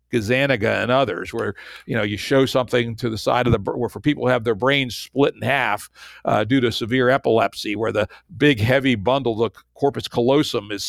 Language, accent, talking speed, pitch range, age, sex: English, American, 210 wpm, 120-145 Hz, 60-79, male